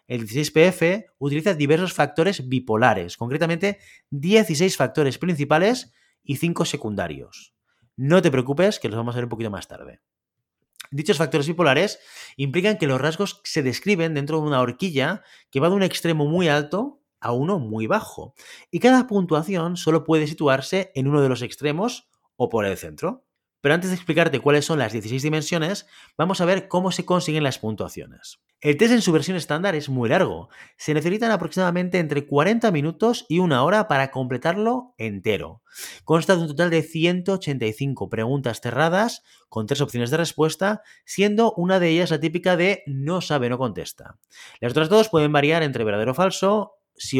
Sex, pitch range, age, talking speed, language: male, 135-185 Hz, 30-49, 175 wpm, Spanish